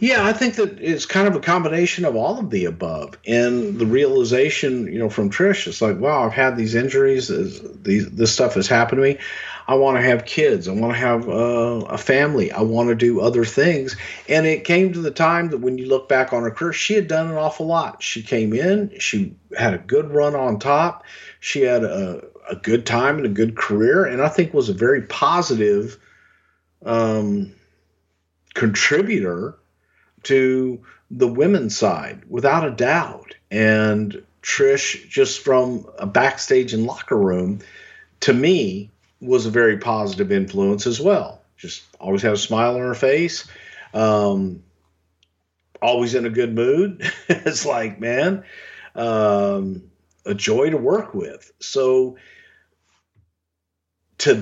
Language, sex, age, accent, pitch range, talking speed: English, male, 50-69, American, 105-160 Hz, 165 wpm